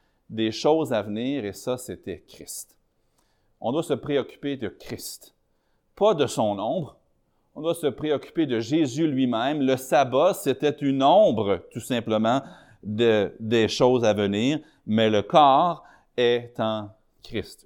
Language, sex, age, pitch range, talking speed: French, male, 30-49, 100-135 Hz, 145 wpm